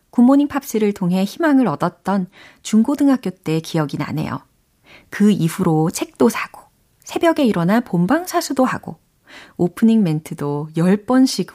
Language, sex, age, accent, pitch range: Korean, female, 40-59, native, 160-220 Hz